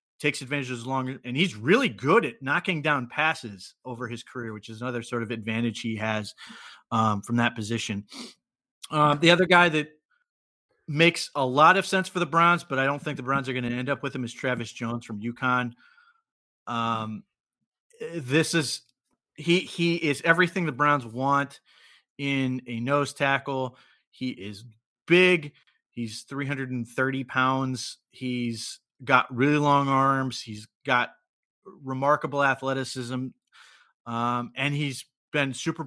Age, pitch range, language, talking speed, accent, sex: 30-49, 125-150 Hz, English, 160 wpm, American, male